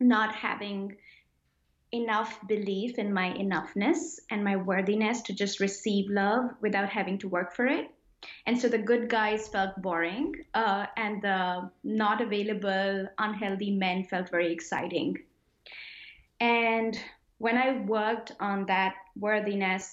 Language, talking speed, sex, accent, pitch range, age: English, 135 wpm, female, Indian, 195-225 Hz, 20-39